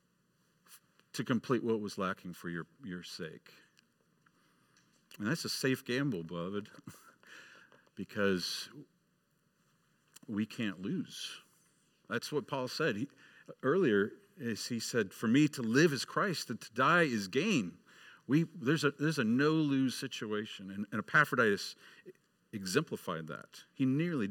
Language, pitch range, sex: English, 105-155 Hz, male